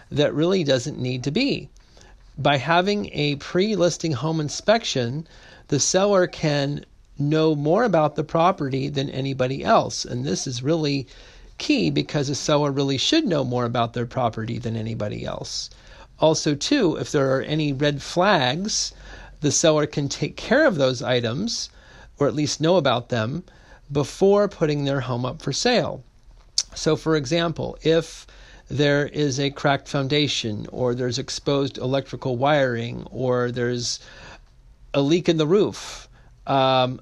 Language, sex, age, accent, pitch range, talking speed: English, male, 40-59, American, 125-155 Hz, 150 wpm